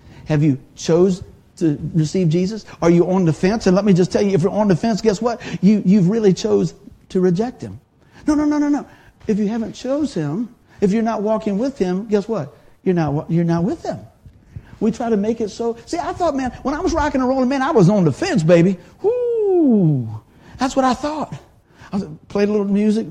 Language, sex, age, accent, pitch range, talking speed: English, male, 50-69, American, 155-225 Hz, 225 wpm